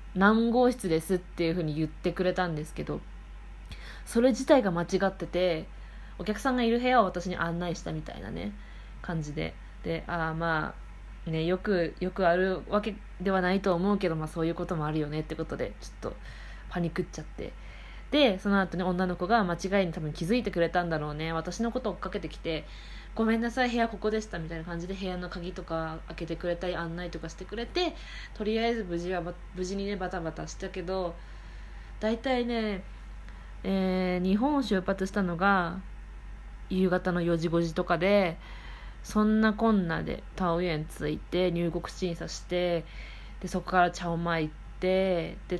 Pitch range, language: 165-195 Hz, Japanese